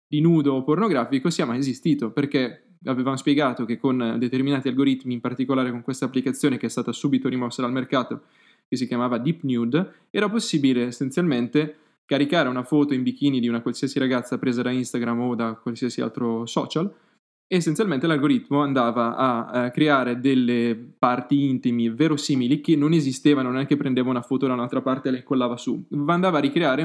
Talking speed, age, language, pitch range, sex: 180 wpm, 20-39, Italian, 125-145 Hz, male